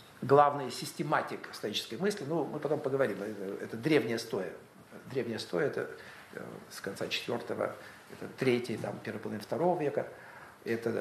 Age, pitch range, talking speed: 50-69, 120-160 Hz, 140 wpm